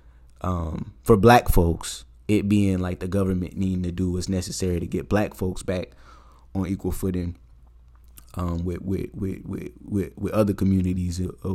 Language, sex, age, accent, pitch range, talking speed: English, male, 20-39, American, 85-100 Hz, 165 wpm